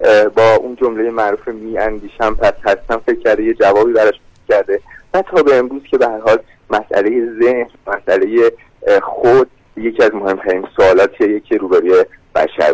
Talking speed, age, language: 155 wpm, 30-49, Persian